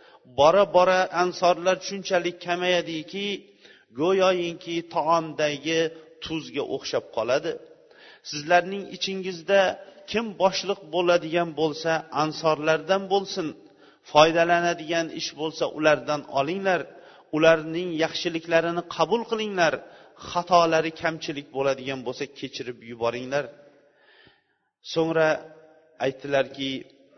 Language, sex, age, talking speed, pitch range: Bulgarian, male, 40-59, 75 wpm, 155-185 Hz